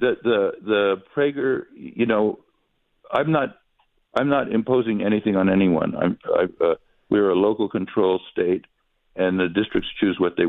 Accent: American